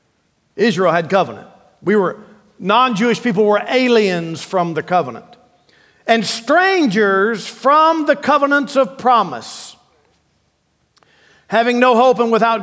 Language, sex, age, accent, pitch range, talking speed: English, male, 50-69, American, 185-230 Hz, 115 wpm